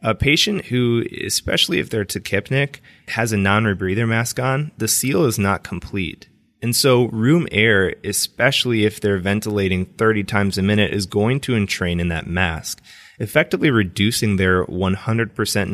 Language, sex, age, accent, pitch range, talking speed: English, male, 20-39, American, 90-115 Hz, 155 wpm